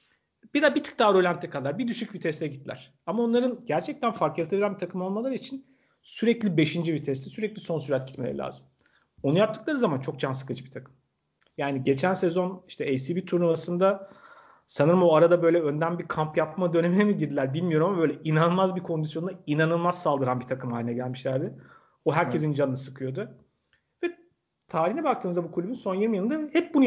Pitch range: 140-190 Hz